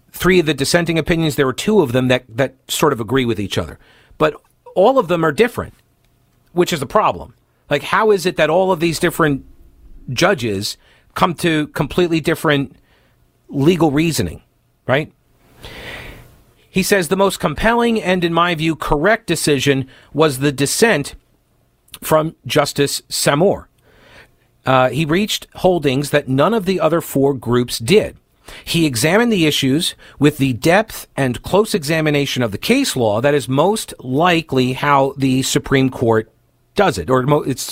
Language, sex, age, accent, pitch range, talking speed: English, male, 50-69, American, 130-170 Hz, 160 wpm